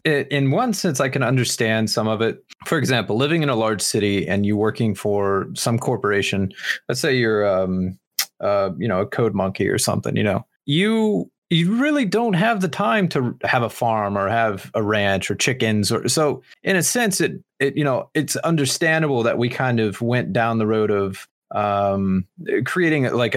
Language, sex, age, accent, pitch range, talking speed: English, male, 30-49, American, 110-145 Hz, 200 wpm